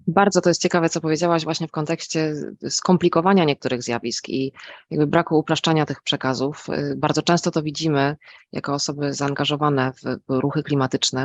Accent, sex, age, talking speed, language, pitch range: Polish, female, 20-39, 150 wpm, English, 140-165 Hz